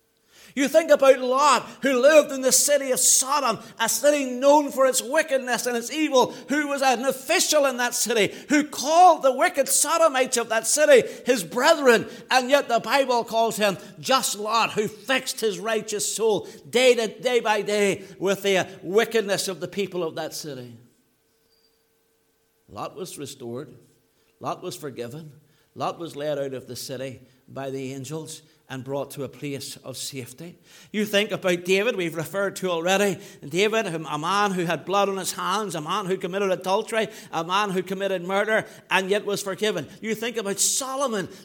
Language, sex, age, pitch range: English, male, 60-79, 170-255 Hz